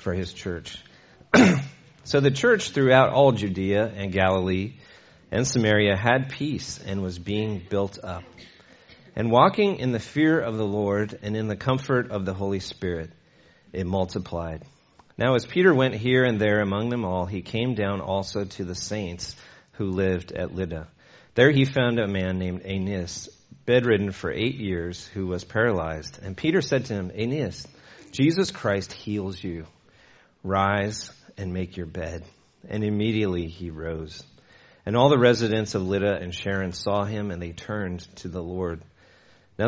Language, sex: English, male